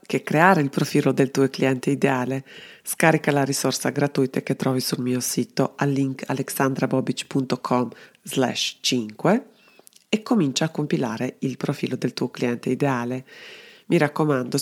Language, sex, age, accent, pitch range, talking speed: Italian, female, 30-49, native, 130-160 Hz, 130 wpm